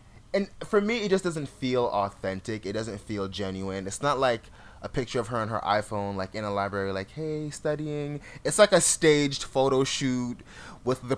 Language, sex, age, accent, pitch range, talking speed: English, male, 20-39, American, 100-135 Hz, 200 wpm